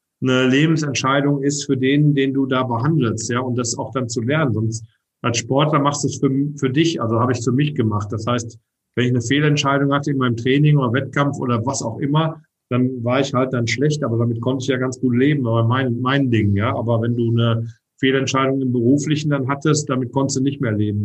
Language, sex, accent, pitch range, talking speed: German, male, German, 125-150 Hz, 230 wpm